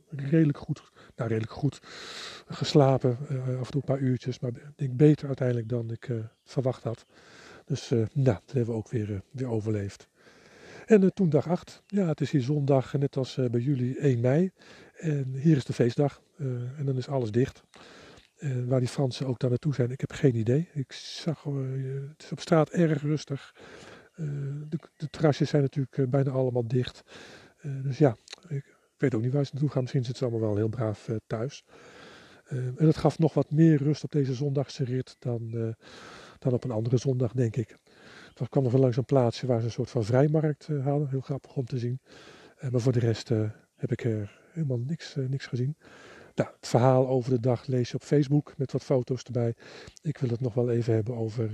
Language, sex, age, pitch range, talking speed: Dutch, male, 50-69, 125-145 Hz, 225 wpm